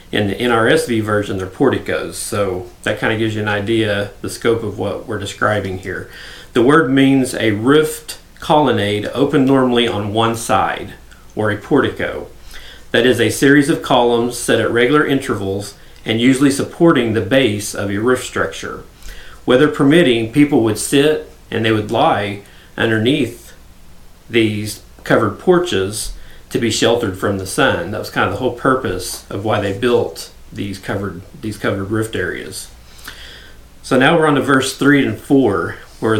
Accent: American